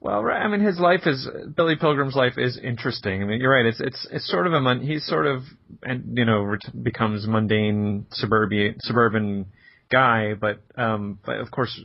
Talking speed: 185 wpm